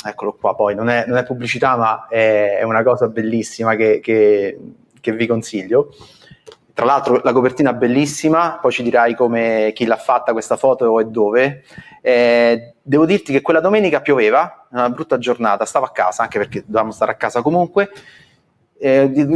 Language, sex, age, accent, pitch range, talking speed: Italian, male, 30-49, native, 115-140 Hz, 180 wpm